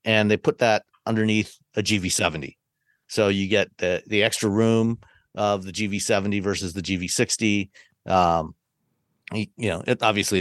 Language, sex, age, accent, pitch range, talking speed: English, male, 40-59, American, 95-115 Hz, 145 wpm